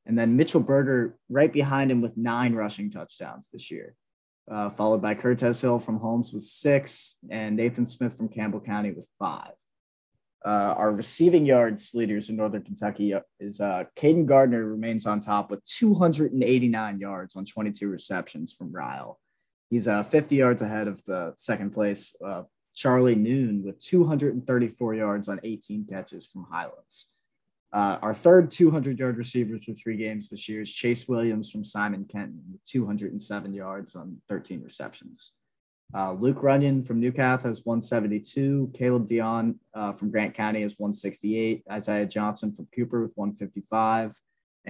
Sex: male